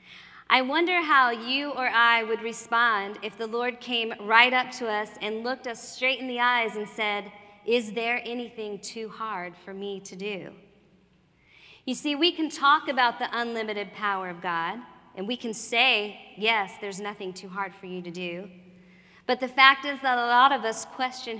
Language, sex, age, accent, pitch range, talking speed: English, female, 40-59, American, 195-240 Hz, 190 wpm